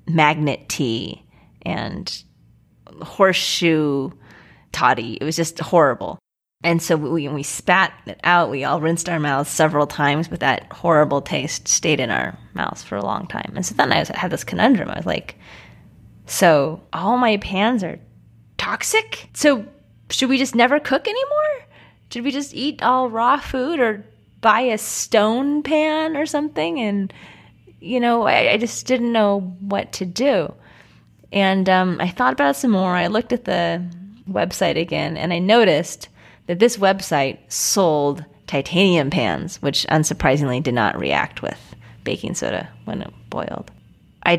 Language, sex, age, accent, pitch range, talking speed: English, female, 20-39, American, 145-220 Hz, 160 wpm